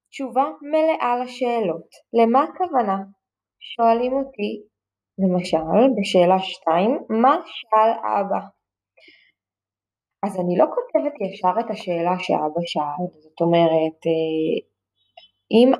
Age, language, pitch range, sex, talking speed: 20-39, Hebrew, 185-265 Hz, female, 95 wpm